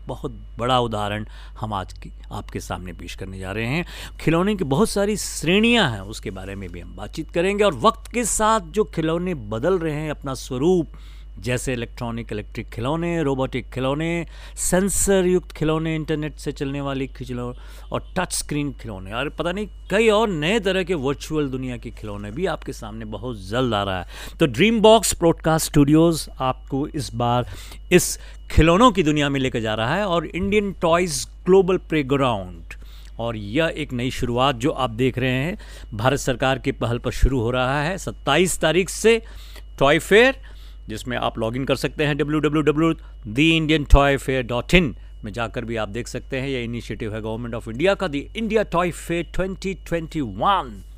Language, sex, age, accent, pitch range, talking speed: Hindi, male, 50-69, native, 115-170 Hz, 175 wpm